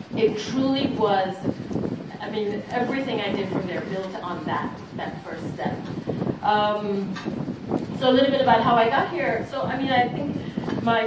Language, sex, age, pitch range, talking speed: English, female, 30-49, 185-220 Hz, 175 wpm